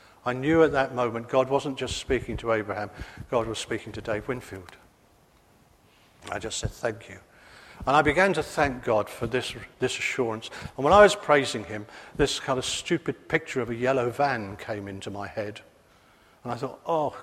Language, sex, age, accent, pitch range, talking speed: English, male, 50-69, British, 115-150 Hz, 190 wpm